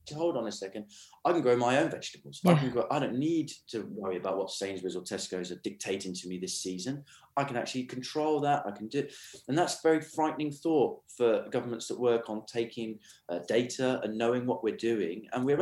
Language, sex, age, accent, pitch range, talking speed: English, male, 20-39, British, 105-140 Hz, 220 wpm